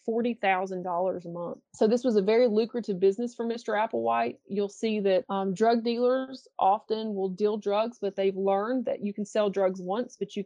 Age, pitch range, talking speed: 30-49, 190-220 Hz, 190 wpm